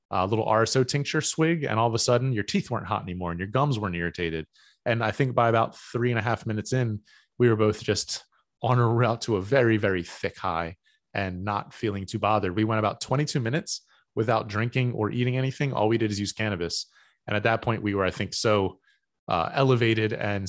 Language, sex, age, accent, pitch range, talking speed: English, male, 30-49, American, 105-120 Hz, 225 wpm